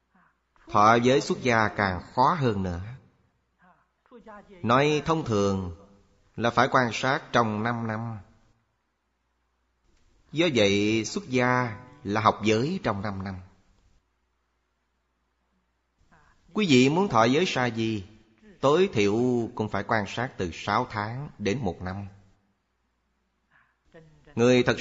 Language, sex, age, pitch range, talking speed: Vietnamese, male, 30-49, 95-125 Hz, 120 wpm